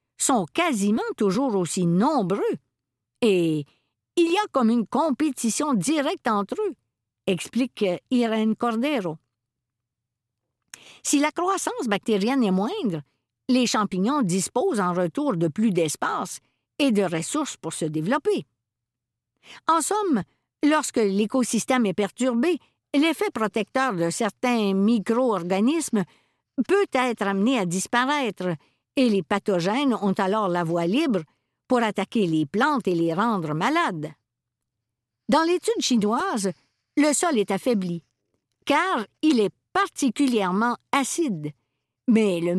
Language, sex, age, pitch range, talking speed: French, female, 60-79, 175-270 Hz, 120 wpm